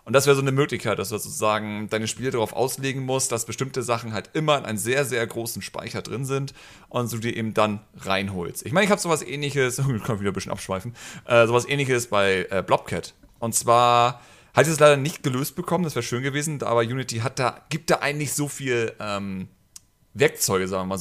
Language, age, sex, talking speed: German, 40-59, male, 225 wpm